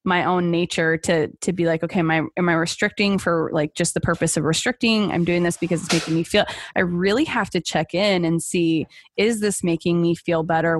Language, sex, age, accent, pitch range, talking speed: English, female, 20-39, American, 165-190 Hz, 235 wpm